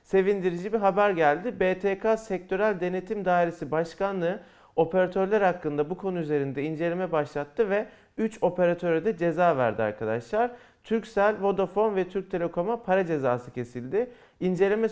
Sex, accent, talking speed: male, native, 130 wpm